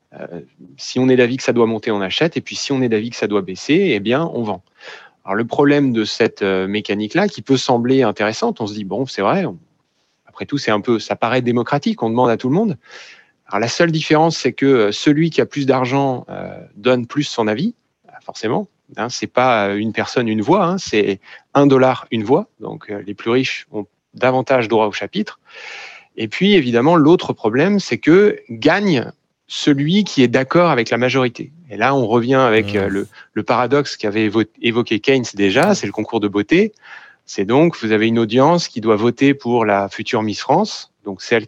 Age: 30-49